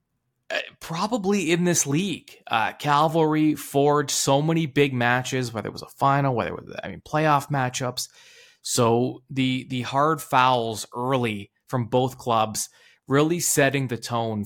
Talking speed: 150 wpm